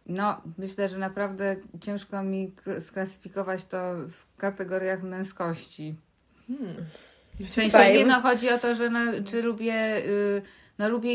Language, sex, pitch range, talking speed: Polish, female, 185-215 Hz, 135 wpm